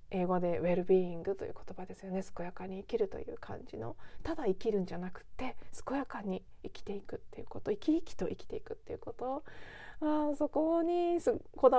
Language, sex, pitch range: Japanese, female, 175-250 Hz